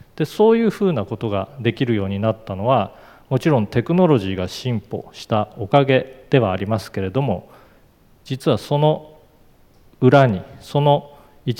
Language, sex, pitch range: Japanese, male, 100-130 Hz